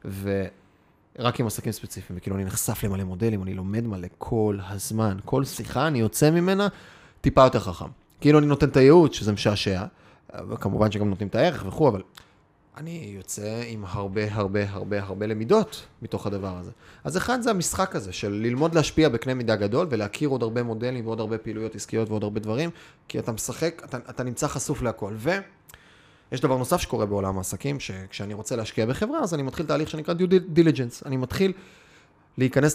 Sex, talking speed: male, 170 wpm